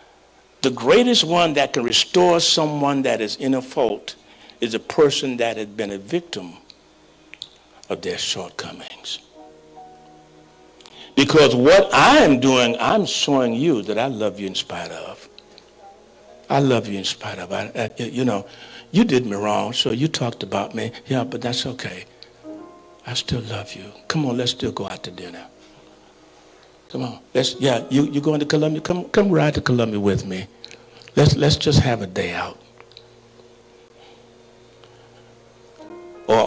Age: 60-79